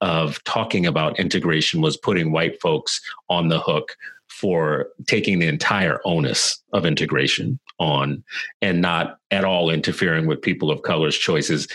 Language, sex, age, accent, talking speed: English, male, 40-59, American, 150 wpm